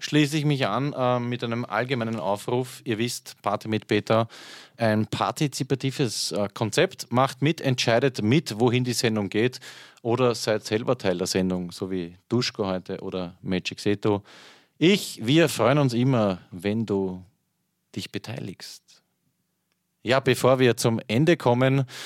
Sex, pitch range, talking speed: male, 105-135 Hz, 145 wpm